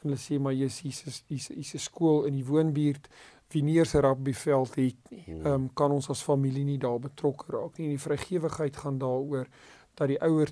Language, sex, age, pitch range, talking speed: Dutch, male, 40-59, 135-150 Hz, 240 wpm